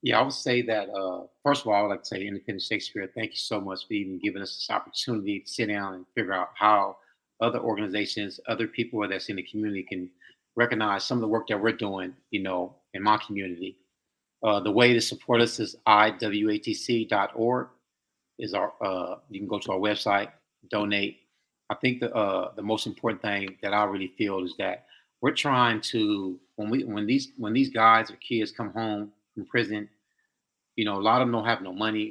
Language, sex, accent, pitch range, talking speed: English, male, American, 105-120 Hz, 210 wpm